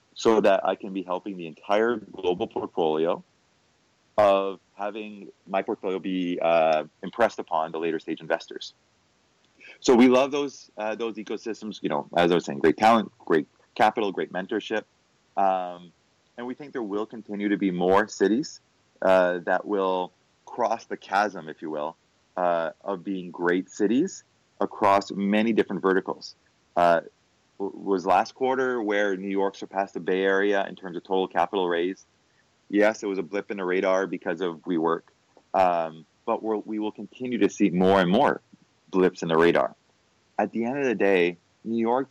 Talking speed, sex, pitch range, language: 170 wpm, male, 90-105 Hz, English